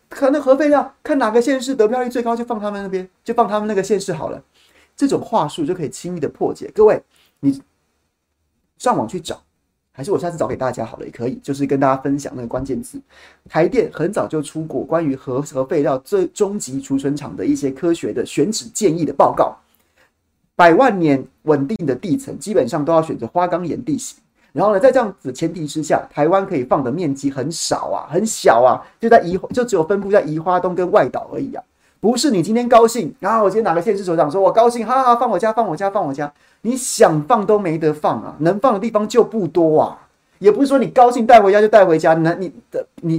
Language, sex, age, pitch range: Chinese, male, 30-49, 155-230 Hz